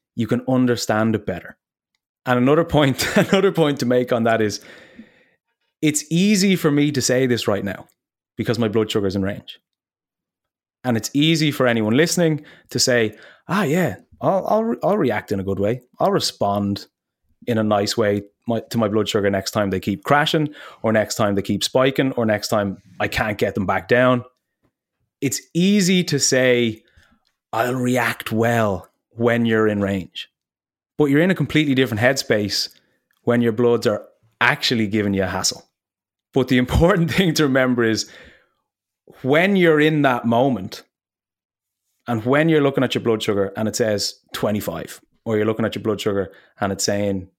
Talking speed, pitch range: 180 wpm, 105-140 Hz